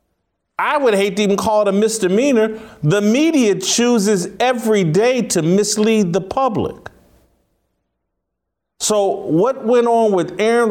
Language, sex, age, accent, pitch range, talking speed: English, male, 40-59, American, 180-230 Hz, 135 wpm